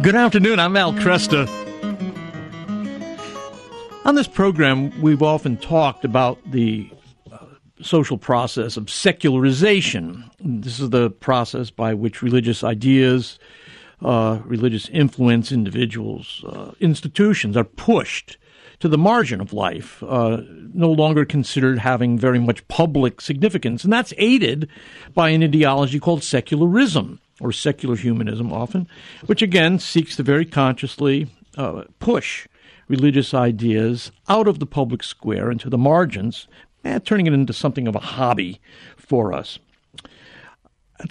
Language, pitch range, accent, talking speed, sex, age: English, 120-170 Hz, American, 130 wpm, male, 60-79